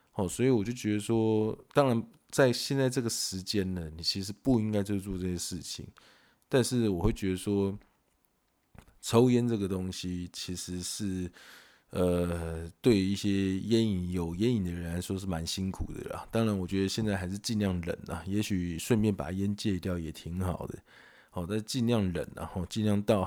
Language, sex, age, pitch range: Chinese, male, 20-39, 90-110 Hz